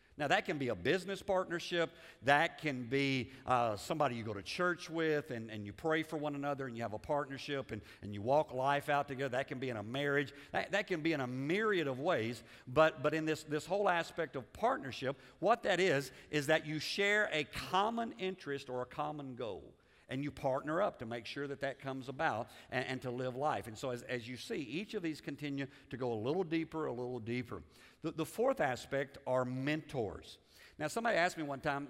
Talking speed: 225 wpm